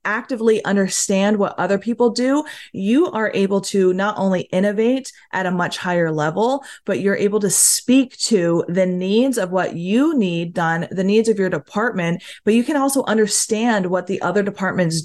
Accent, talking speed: American, 180 wpm